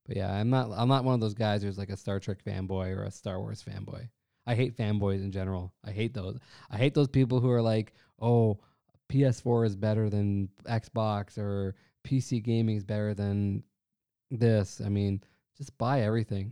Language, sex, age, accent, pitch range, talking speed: English, male, 20-39, American, 100-125 Hz, 195 wpm